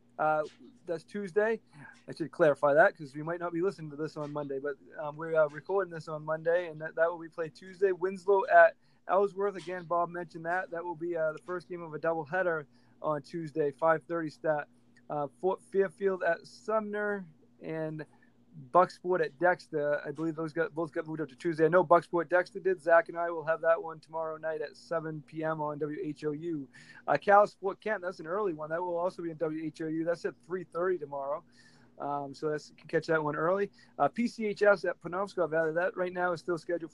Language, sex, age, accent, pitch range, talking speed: English, male, 20-39, American, 155-190 Hz, 210 wpm